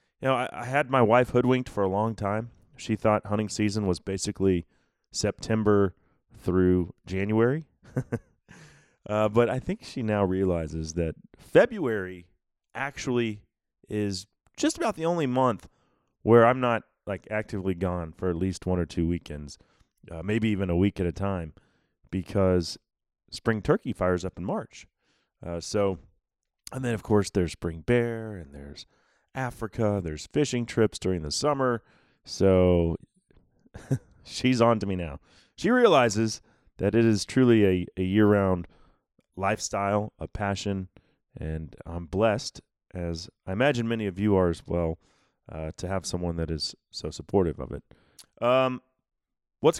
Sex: male